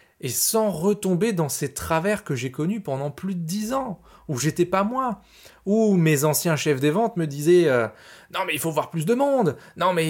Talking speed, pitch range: 215 wpm, 145-195 Hz